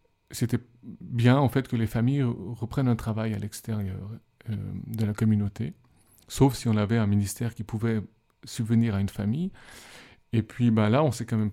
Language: French